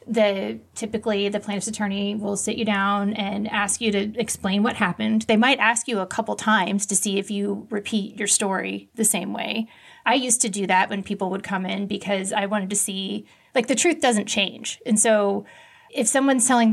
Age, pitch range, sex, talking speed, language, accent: 30-49, 200-225 Hz, female, 205 wpm, English, American